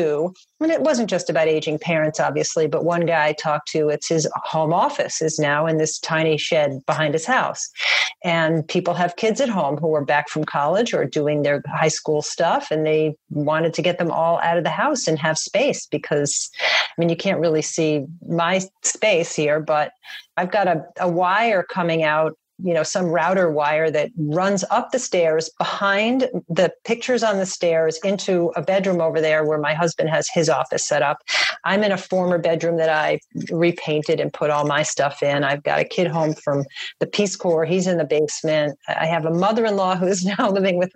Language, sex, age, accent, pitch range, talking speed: English, female, 40-59, American, 155-195 Hz, 210 wpm